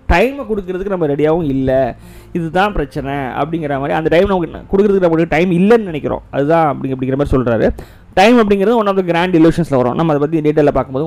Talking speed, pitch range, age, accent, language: 185 wpm, 135-175 Hz, 20-39, native, Tamil